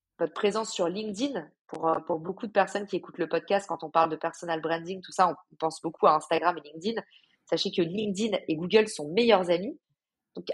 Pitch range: 175-225 Hz